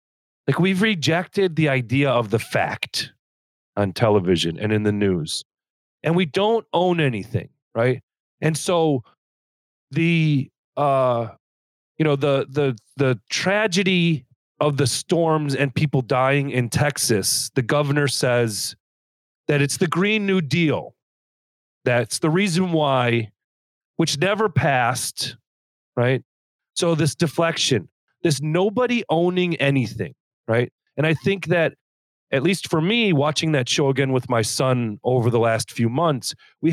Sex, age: male, 40-59